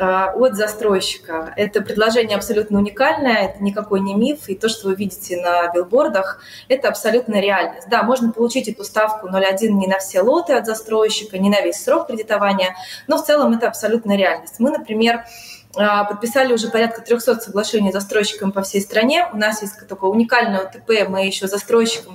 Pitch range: 195-235 Hz